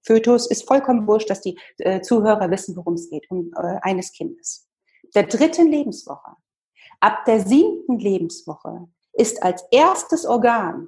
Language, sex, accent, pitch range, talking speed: German, female, German, 195-280 Hz, 140 wpm